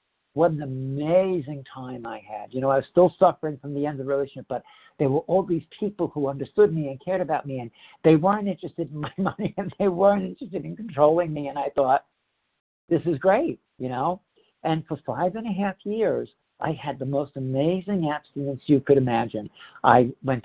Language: English